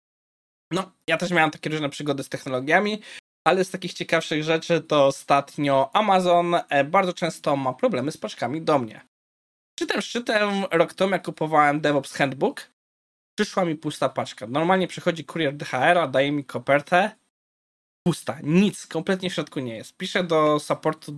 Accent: native